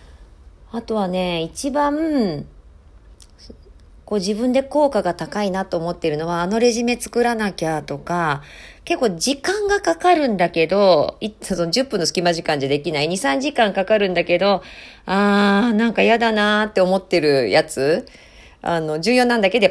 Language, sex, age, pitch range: Japanese, female, 40-59, 160-235 Hz